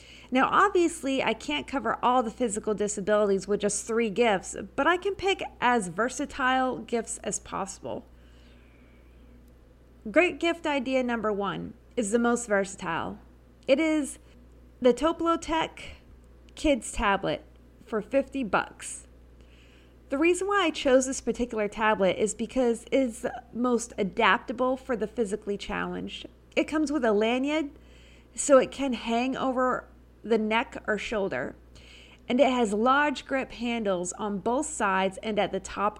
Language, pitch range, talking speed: English, 200-265 Hz, 140 wpm